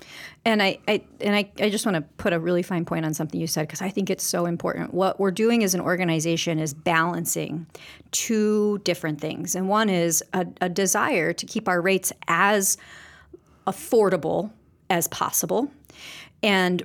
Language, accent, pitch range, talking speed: English, American, 170-200 Hz, 180 wpm